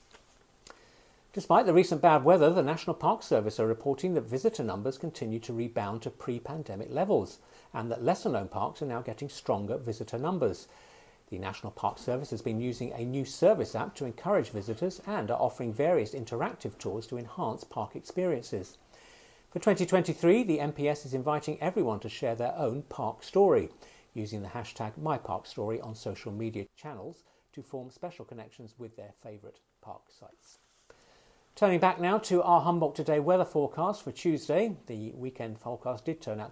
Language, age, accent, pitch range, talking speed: English, 50-69, British, 115-165 Hz, 165 wpm